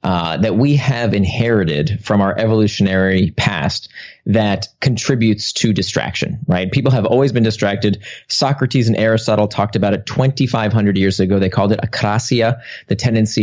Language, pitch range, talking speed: English, 105-155 Hz, 150 wpm